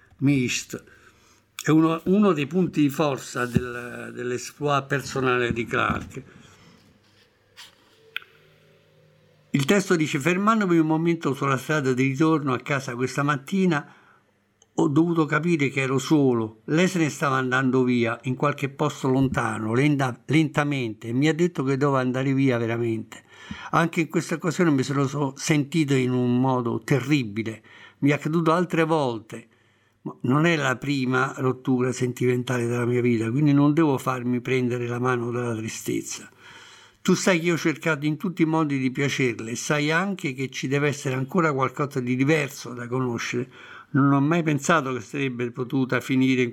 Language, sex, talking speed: Italian, male, 155 wpm